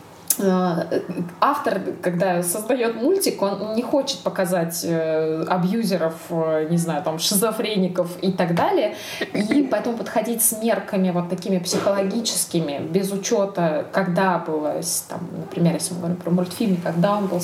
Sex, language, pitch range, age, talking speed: female, Russian, 175-220 Hz, 20-39, 130 wpm